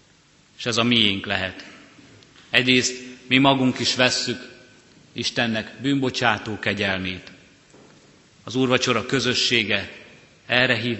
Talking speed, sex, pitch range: 100 wpm, male, 105-130 Hz